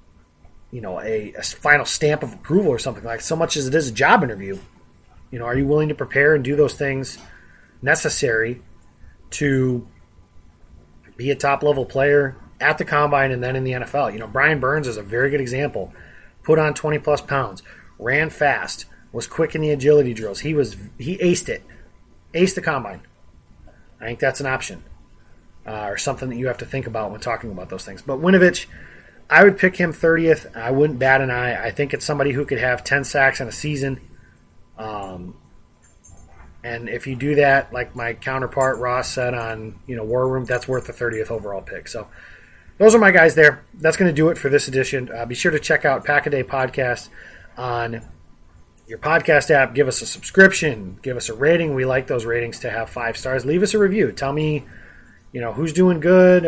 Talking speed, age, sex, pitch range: 205 wpm, 30-49, male, 110-145 Hz